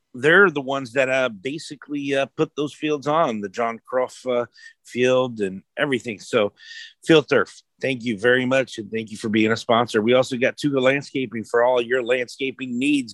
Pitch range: 115-150 Hz